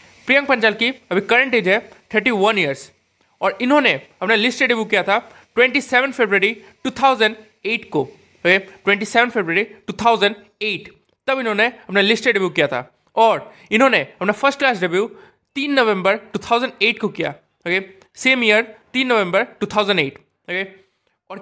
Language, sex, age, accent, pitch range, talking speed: Hindi, male, 20-39, native, 195-245 Hz, 150 wpm